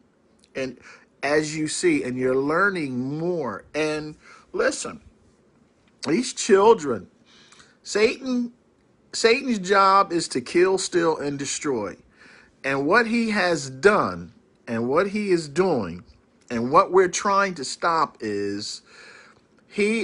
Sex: male